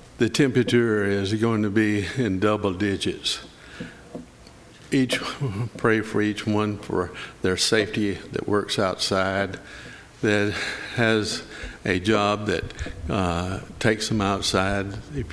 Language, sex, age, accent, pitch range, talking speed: English, male, 60-79, American, 90-105 Hz, 115 wpm